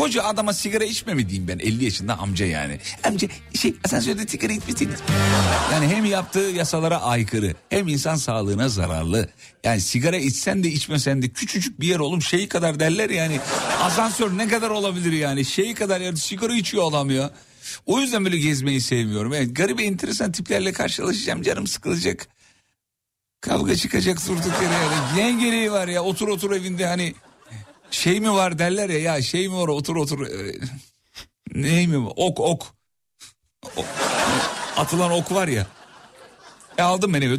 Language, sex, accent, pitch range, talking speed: Turkish, male, native, 110-180 Hz, 155 wpm